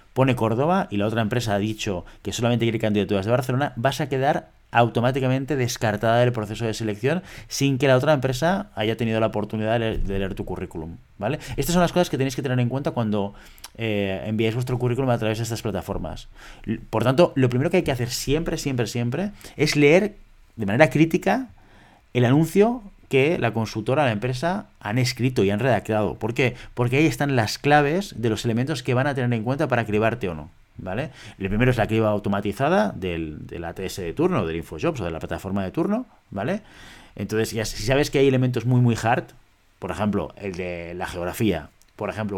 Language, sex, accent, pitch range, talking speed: Spanish, male, Spanish, 105-135 Hz, 205 wpm